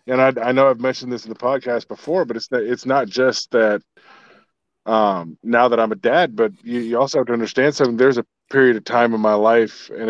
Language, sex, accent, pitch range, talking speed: English, male, American, 110-125 Hz, 245 wpm